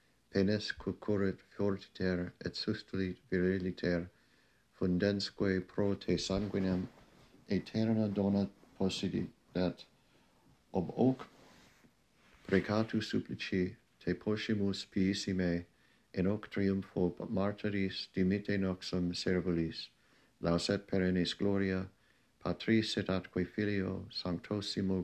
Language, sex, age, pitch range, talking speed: English, male, 60-79, 90-105 Hz, 85 wpm